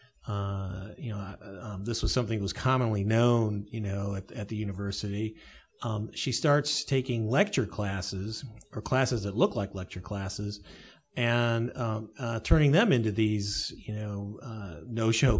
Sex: male